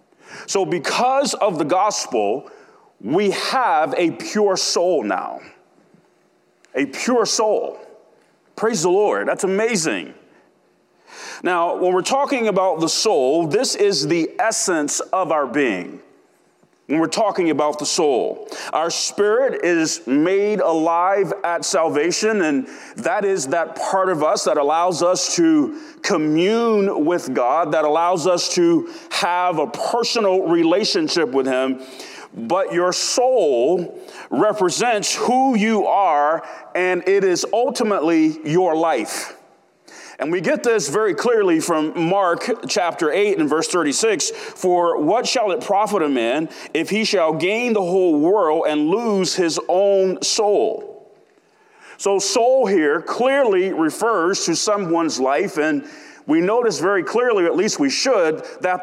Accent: American